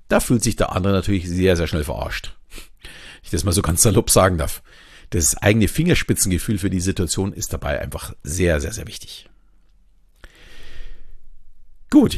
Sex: male